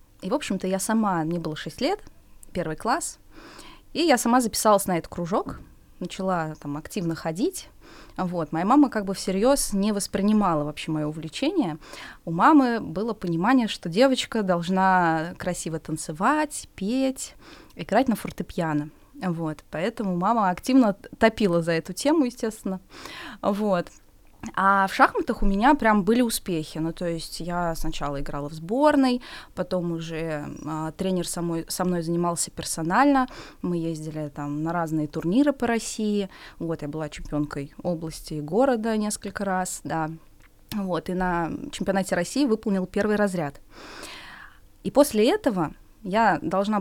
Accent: native